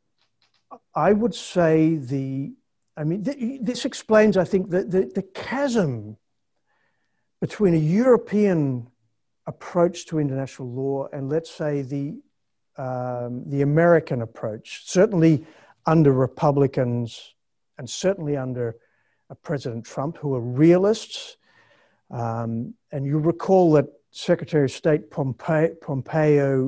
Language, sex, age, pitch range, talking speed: English, male, 50-69, 130-175 Hz, 110 wpm